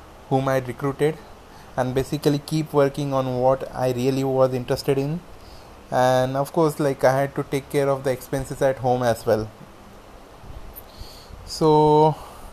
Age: 20-39